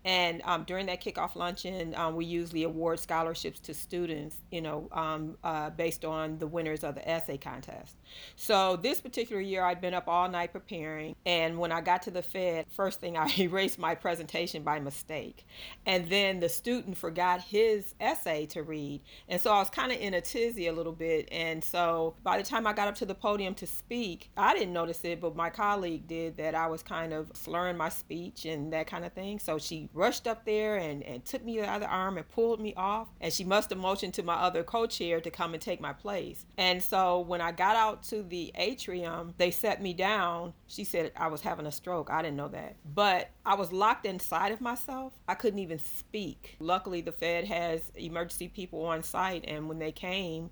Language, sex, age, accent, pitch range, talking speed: English, female, 40-59, American, 160-190 Hz, 215 wpm